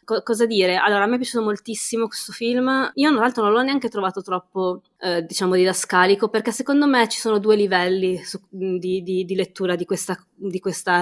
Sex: female